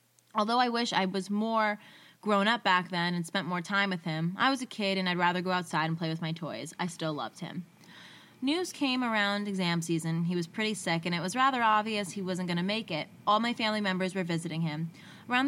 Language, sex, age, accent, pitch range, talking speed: English, female, 20-39, American, 175-210 Hz, 240 wpm